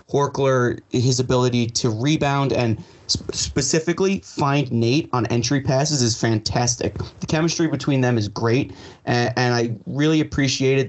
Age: 30-49